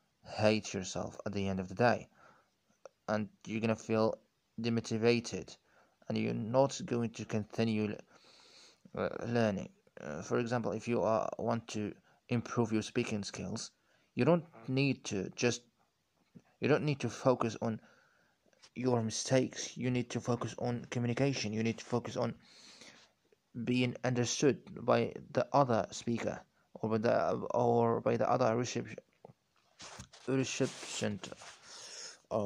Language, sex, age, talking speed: English, male, 20-39, 135 wpm